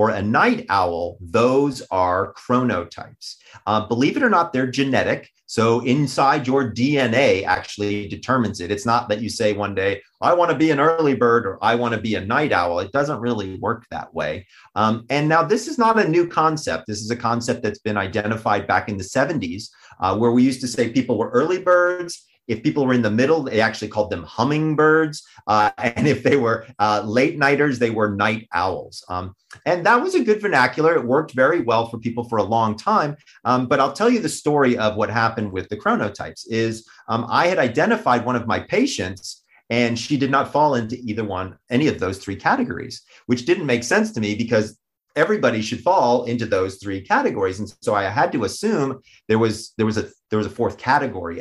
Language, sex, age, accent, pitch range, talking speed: English, male, 30-49, American, 105-135 Hz, 215 wpm